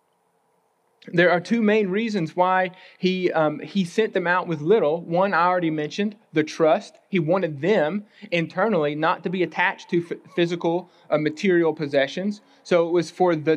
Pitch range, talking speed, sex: 165-200 Hz, 170 wpm, male